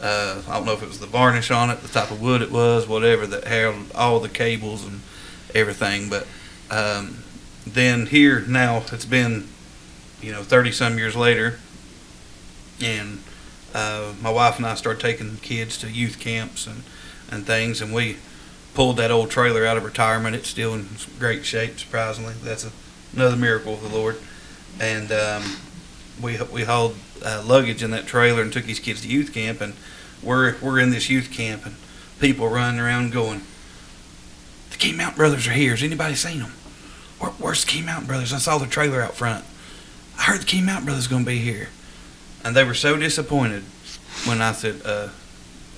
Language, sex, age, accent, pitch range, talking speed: English, male, 40-59, American, 100-120 Hz, 190 wpm